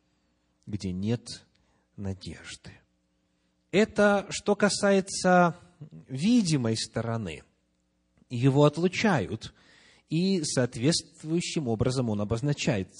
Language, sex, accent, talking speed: Russian, male, native, 70 wpm